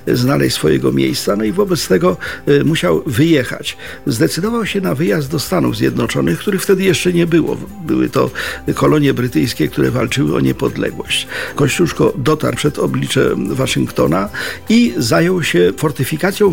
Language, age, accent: Polish, 50-69, native